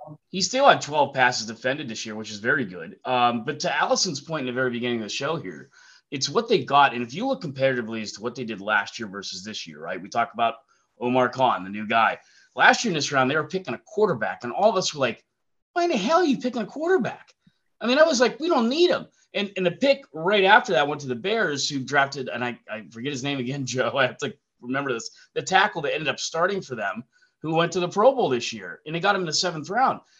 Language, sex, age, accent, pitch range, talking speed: English, male, 30-49, American, 130-190 Hz, 270 wpm